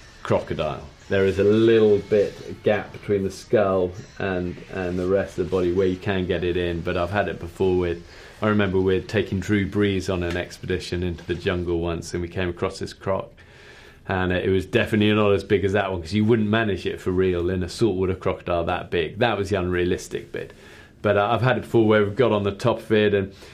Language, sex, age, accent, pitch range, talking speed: English, male, 30-49, British, 95-135 Hz, 230 wpm